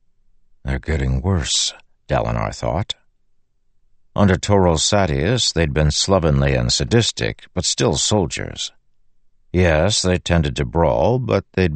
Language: English